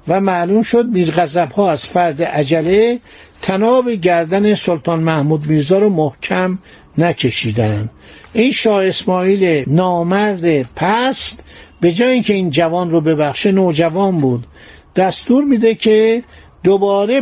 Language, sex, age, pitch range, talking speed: Persian, male, 60-79, 165-210 Hz, 120 wpm